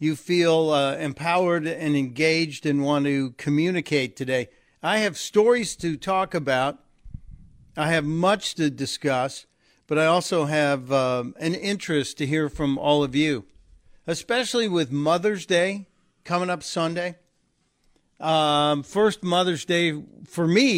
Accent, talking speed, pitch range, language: American, 140 wpm, 140-170 Hz, English